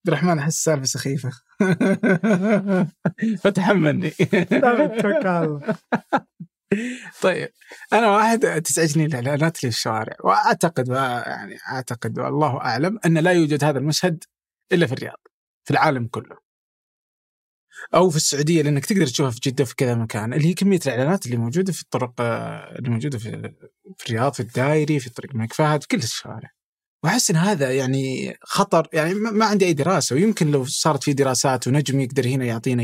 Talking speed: 145 wpm